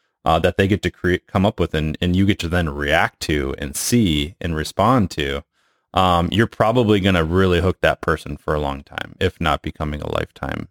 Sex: male